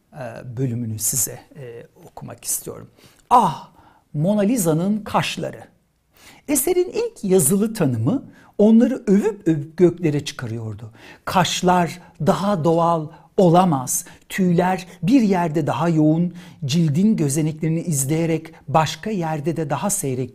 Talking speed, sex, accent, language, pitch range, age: 105 wpm, male, native, Turkish, 150-220 Hz, 60-79